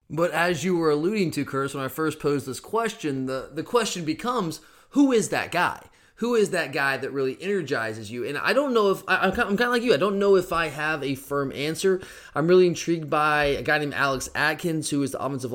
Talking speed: 240 wpm